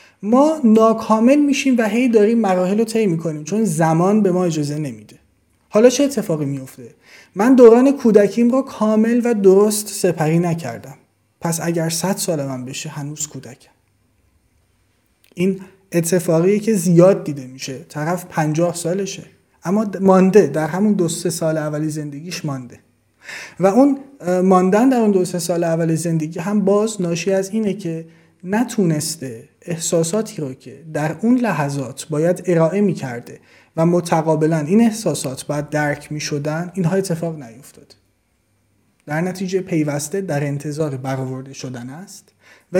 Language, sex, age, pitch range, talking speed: Persian, male, 30-49, 145-210 Hz, 145 wpm